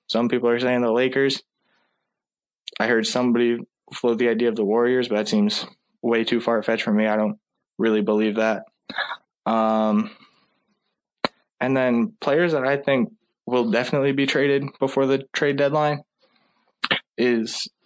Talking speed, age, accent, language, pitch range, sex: 150 wpm, 20-39, American, English, 110-125 Hz, male